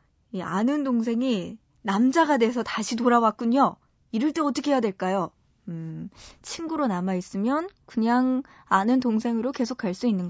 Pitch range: 200-270 Hz